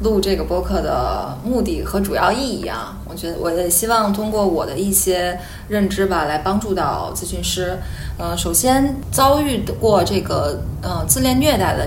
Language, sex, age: Chinese, female, 20-39